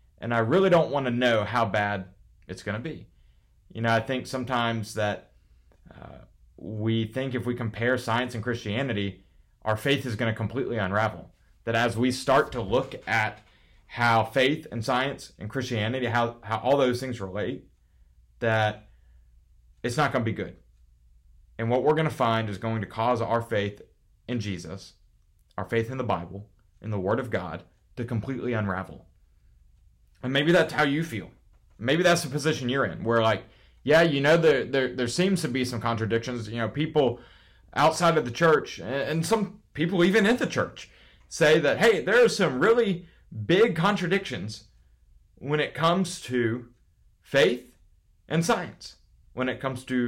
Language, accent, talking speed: English, American, 175 wpm